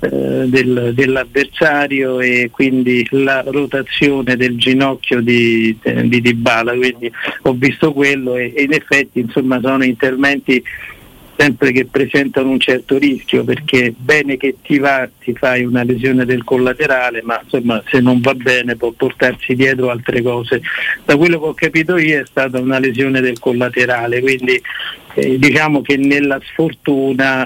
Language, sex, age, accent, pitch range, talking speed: Italian, male, 50-69, native, 125-140 Hz, 150 wpm